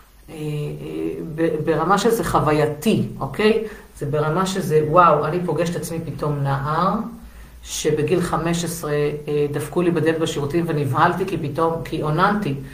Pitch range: 150-190 Hz